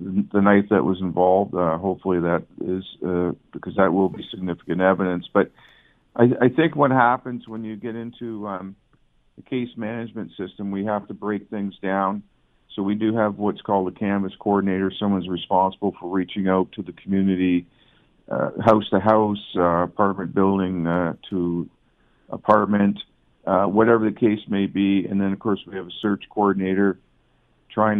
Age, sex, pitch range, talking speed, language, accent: 50-69, male, 95-105 Hz, 175 wpm, English, American